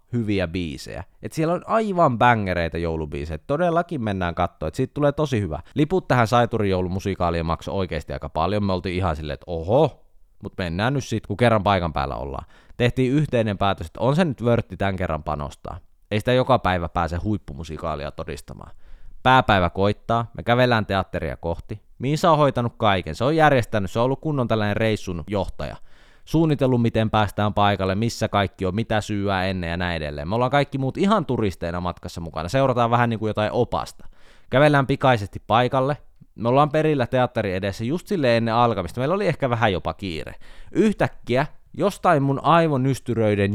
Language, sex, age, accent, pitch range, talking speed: Finnish, male, 20-39, native, 90-130 Hz, 175 wpm